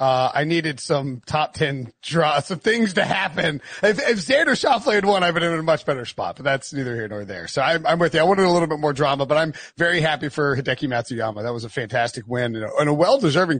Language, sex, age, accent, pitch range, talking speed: English, male, 30-49, American, 130-170 Hz, 270 wpm